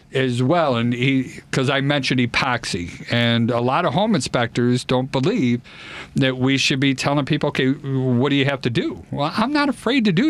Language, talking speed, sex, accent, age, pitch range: English, 200 wpm, male, American, 50-69, 120-160 Hz